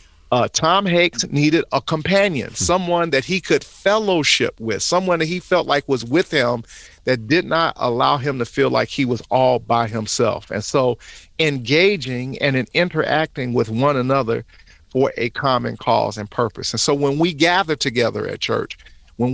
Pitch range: 125-170 Hz